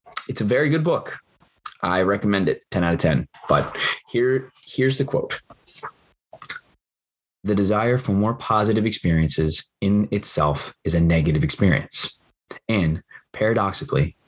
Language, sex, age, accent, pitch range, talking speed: English, male, 20-39, American, 85-130 Hz, 130 wpm